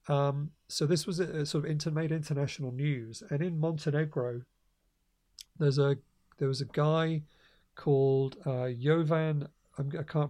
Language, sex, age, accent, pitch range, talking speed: English, male, 40-59, British, 135-155 Hz, 155 wpm